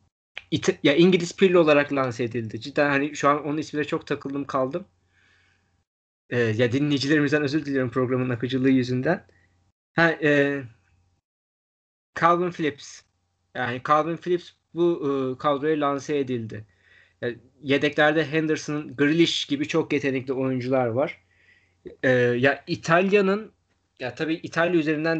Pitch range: 125-160 Hz